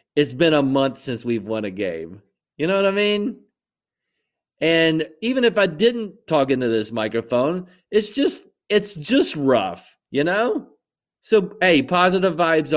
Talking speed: 160 wpm